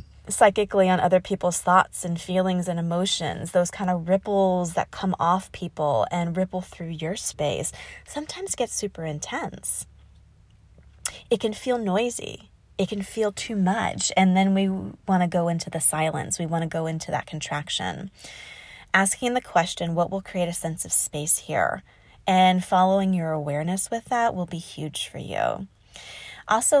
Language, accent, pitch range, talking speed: English, American, 165-200 Hz, 165 wpm